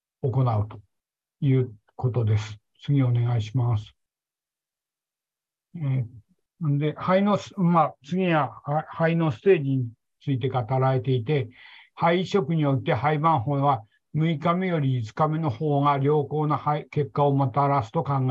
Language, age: Japanese, 60-79